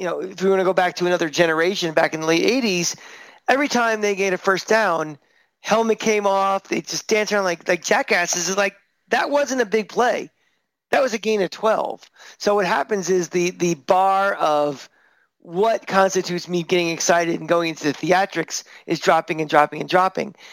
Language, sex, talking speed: English, male, 205 wpm